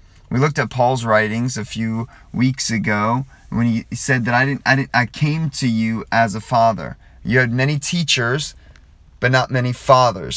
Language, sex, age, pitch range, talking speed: English, male, 30-49, 95-130 Hz, 185 wpm